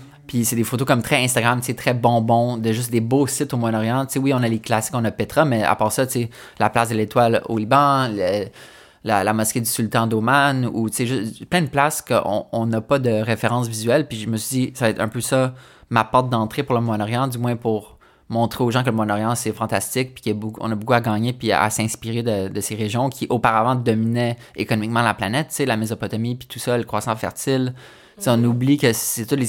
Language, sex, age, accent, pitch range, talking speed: French, male, 20-39, Canadian, 110-125 Hz, 230 wpm